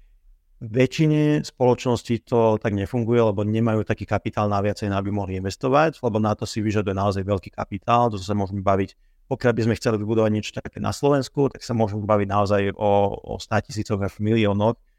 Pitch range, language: 105-120 Hz, Slovak